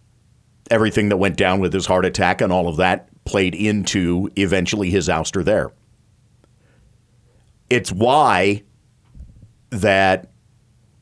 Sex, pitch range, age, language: male, 100-120 Hz, 50-69, English